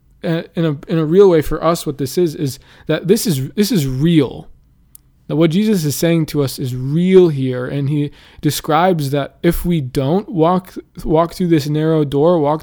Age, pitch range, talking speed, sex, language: 20-39, 145-170 Hz, 200 wpm, male, English